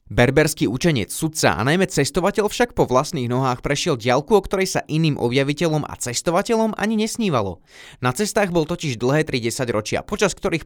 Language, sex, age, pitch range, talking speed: Slovak, male, 20-39, 125-175 Hz, 170 wpm